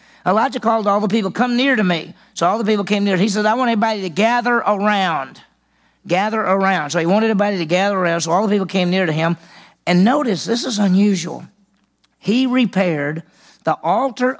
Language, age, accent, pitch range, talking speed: English, 40-59, American, 180-235 Hz, 205 wpm